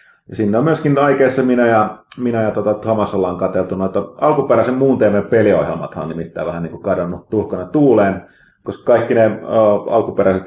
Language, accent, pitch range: Finnish, native, 95-125 Hz